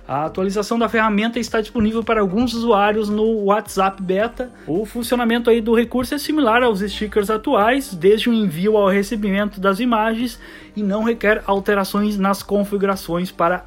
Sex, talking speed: male, 155 wpm